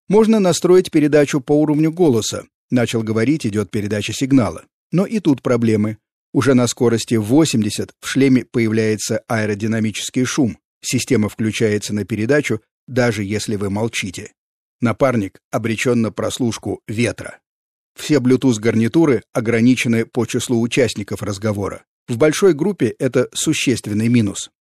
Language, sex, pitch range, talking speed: Russian, male, 110-145 Hz, 125 wpm